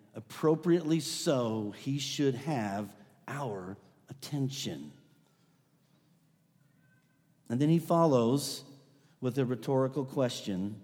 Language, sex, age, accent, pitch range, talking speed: English, male, 50-69, American, 145-200 Hz, 85 wpm